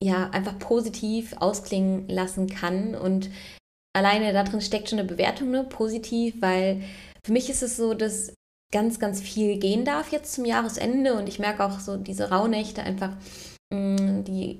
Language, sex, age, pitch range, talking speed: German, female, 20-39, 185-210 Hz, 165 wpm